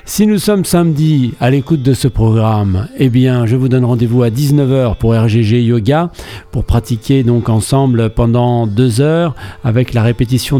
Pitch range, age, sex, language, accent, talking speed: 115-135 Hz, 50-69, male, French, French, 170 wpm